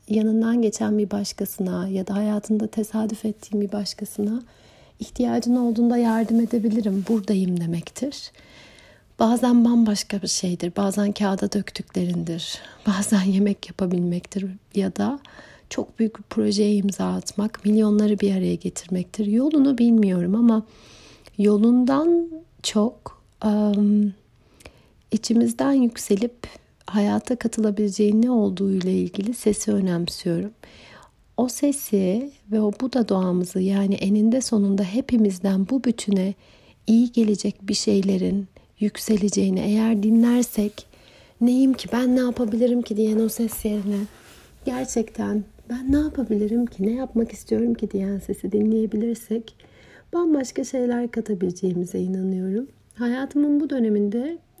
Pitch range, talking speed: 200-235 Hz, 110 wpm